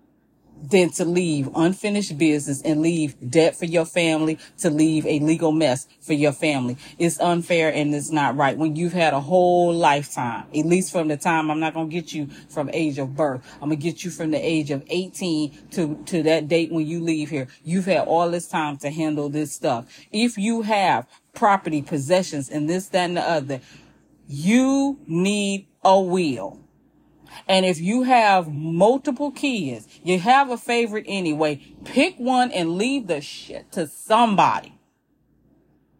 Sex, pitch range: female, 155-230 Hz